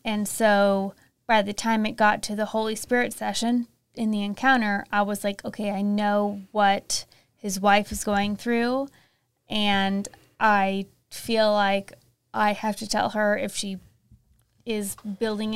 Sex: female